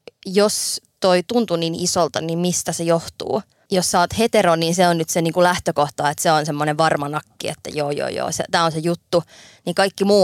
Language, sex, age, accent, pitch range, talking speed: Finnish, female, 20-39, native, 160-195 Hz, 210 wpm